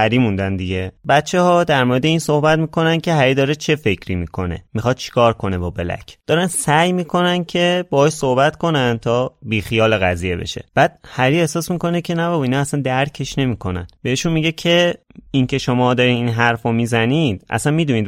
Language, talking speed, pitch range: Persian, 175 wpm, 100-145 Hz